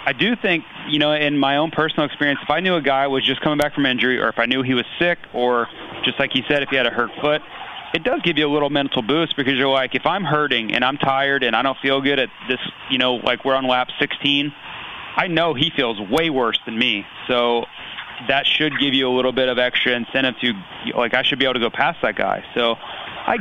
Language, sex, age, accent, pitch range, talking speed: English, male, 30-49, American, 120-140 Hz, 260 wpm